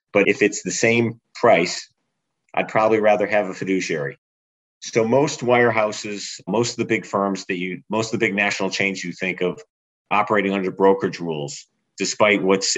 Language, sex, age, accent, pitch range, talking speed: English, male, 40-59, American, 95-110 Hz, 175 wpm